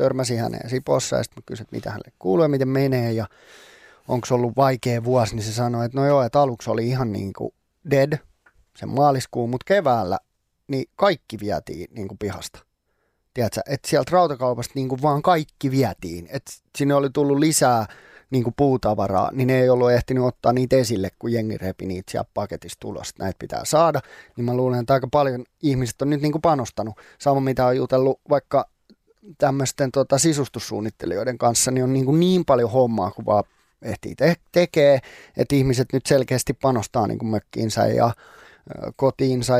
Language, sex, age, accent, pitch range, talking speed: Finnish, male, 20-39, native, 115-135 Hz, 175 wpm